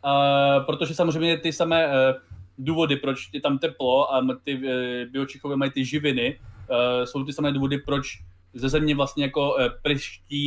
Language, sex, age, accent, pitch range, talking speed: Czech, male, 20-39, native, 120-140 Hz, 150 wpm